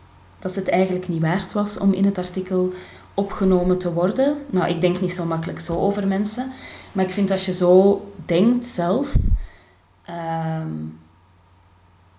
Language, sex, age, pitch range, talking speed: Dutch, female, 30-49, 160-195 Hz, 160 wpm